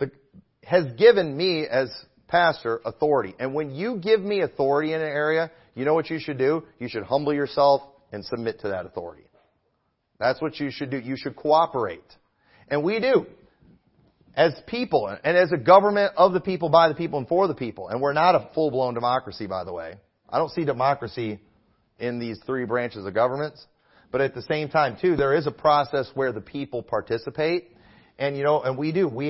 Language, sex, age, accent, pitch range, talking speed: English, male, 40-59, American, 125-165 Hz, 200 wpm